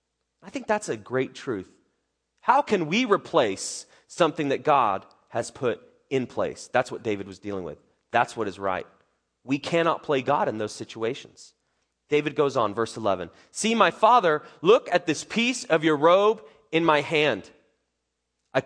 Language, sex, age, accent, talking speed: English, male, 30-49, American, 170 wpm